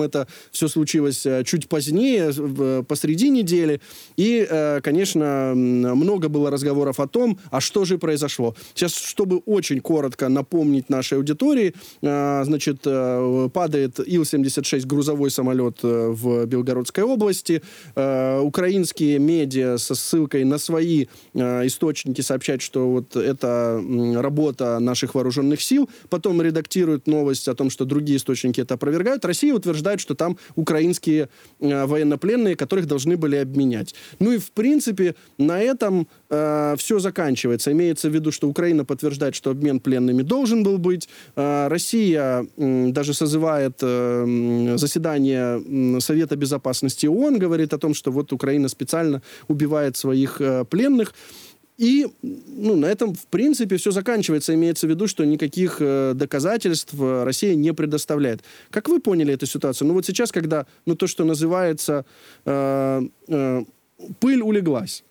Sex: male